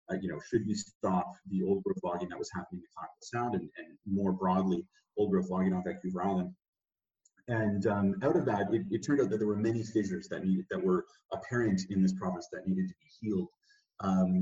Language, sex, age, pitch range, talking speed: English, male, 30-49, 95-120 Hz, 225 wpm